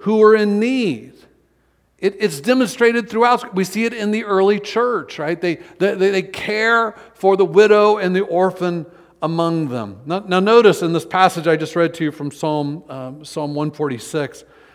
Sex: male